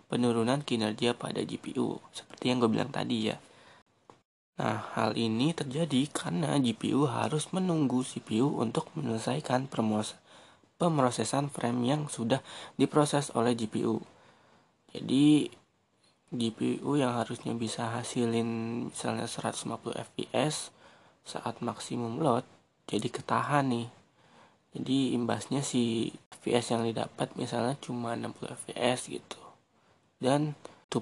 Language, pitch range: Indonesian, 115-140 Hz